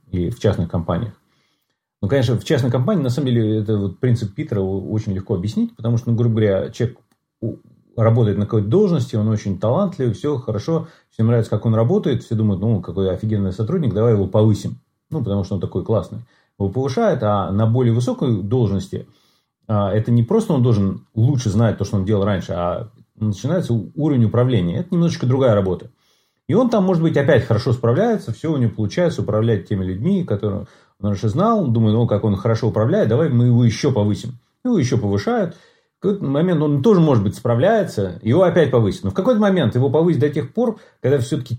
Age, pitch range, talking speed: 30-49, 105-145 Hz, 195 wpm